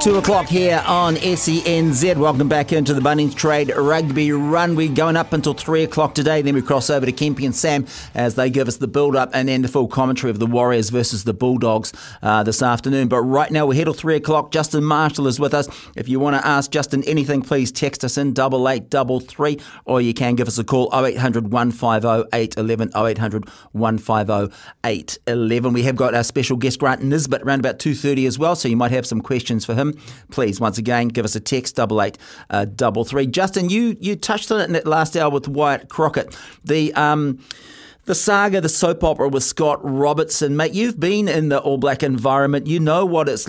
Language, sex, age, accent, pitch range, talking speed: English, male, 40-59, Australian, 125-160 Hz, 215 wpm